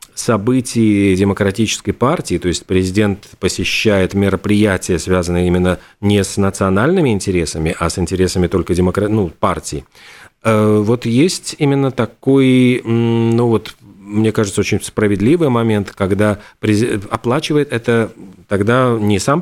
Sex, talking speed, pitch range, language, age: male, 115 wpm, 95-120 Hz, Russian, 40-59